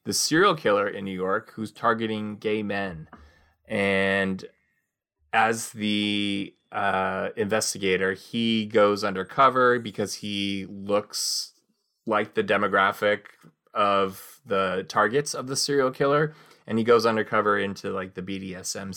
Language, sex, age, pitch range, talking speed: English, male, 20-39, 95-115 Hz, 125 wpm